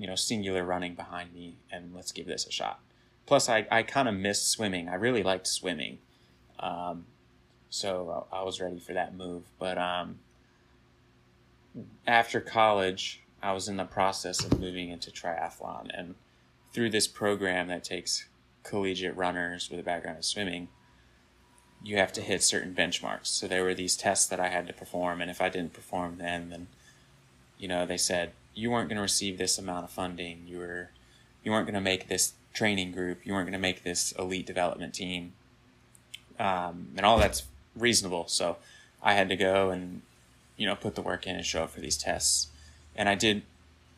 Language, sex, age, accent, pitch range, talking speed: English, male, 20-39, American, 90-100 Hz, 190 wpm